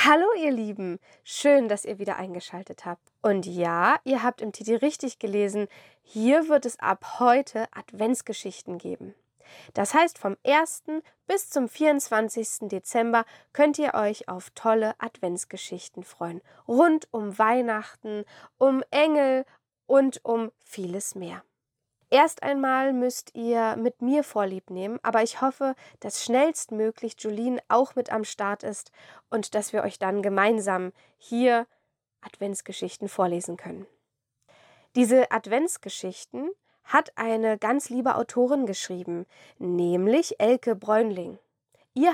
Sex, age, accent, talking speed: female, 10-29, German, 125 wpm